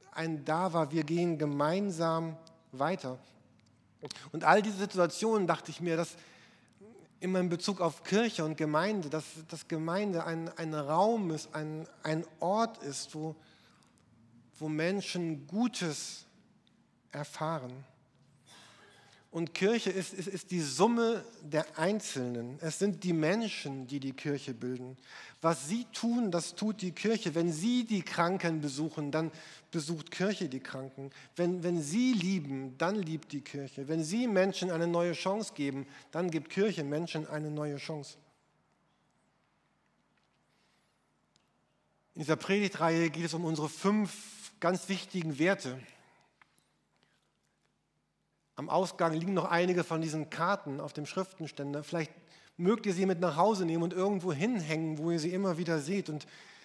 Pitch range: 150-190 Hz